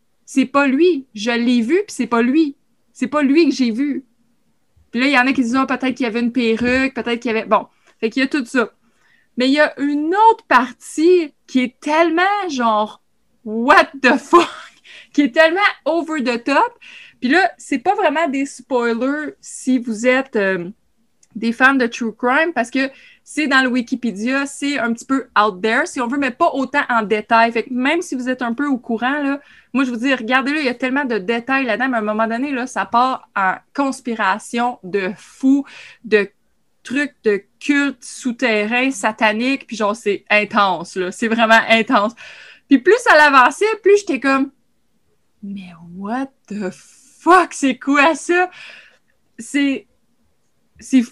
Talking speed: 190 wpm